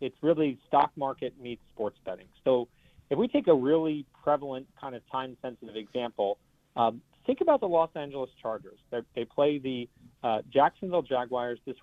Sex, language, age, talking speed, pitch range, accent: male, English, 40-59, 160 wpm, 120-145 Hz, American